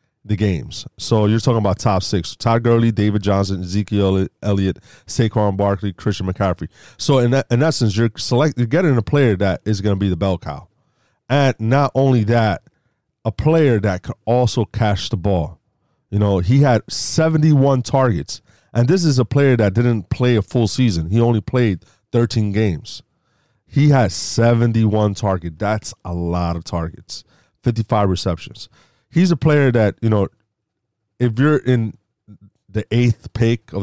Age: 30-49